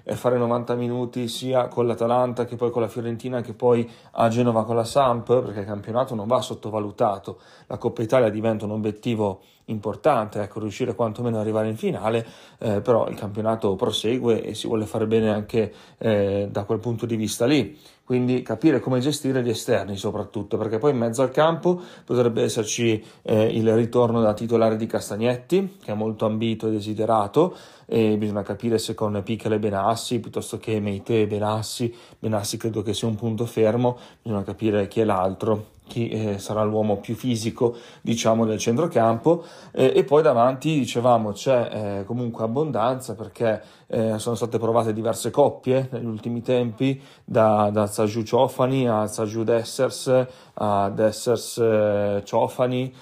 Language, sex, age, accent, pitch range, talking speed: Italian, male, 30-49, native, 110-125 Hz, 165 wpm